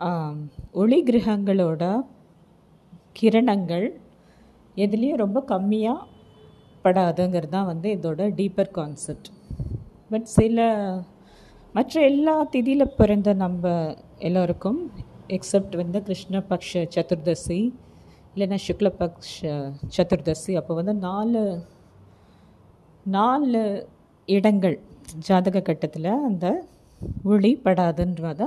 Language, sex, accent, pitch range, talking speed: English, female, Indian, 170-205 Hz, 95 wpm